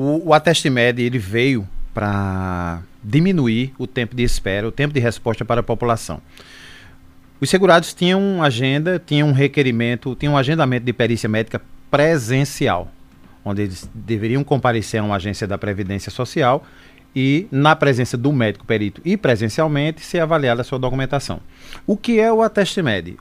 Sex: male